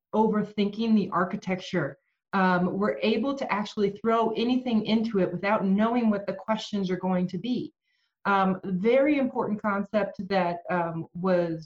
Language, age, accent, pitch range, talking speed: English, 30-49, American, 180-215 Hz, 145 wpm